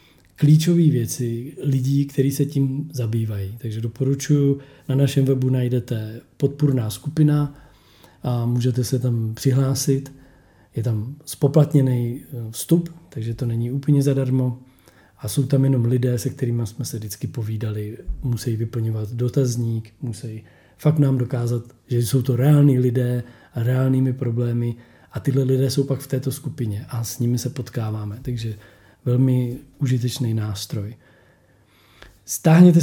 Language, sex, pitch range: Czech, male, 115-140 Hz